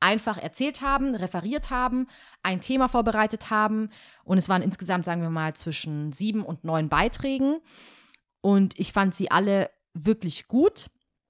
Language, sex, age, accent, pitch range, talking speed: German, female, 30-49, German, 165-205 Hz, 150 wpm